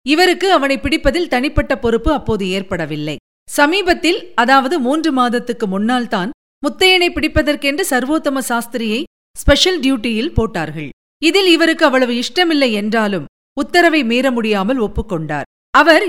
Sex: female